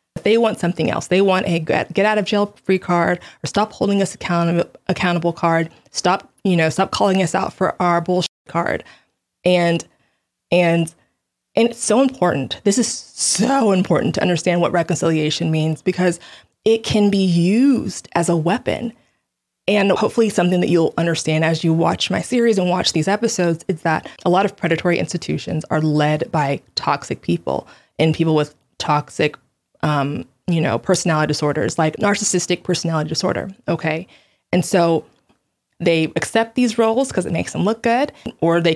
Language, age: English, 20-39